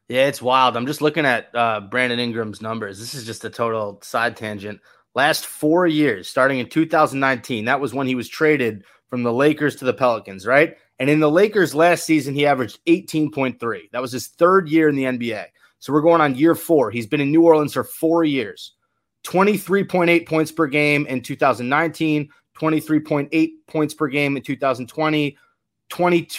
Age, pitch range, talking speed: 30-49, 125-160 Hz, 180 wpm